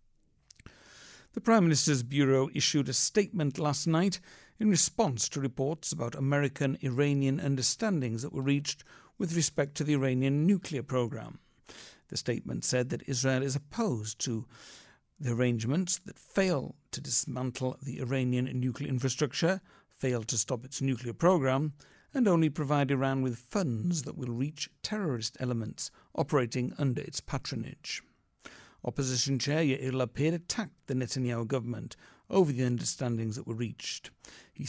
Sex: male